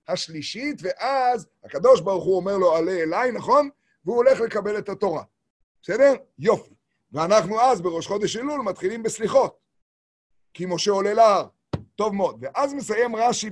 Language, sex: Hebrew, male